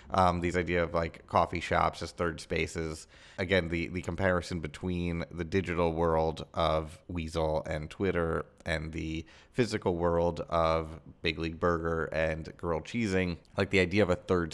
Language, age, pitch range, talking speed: English, 30-49, 80-90 Hz, 160 wpm